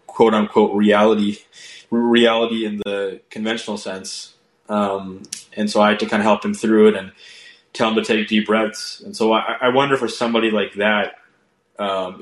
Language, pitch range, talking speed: English, 105-115 Hz, 180 wpm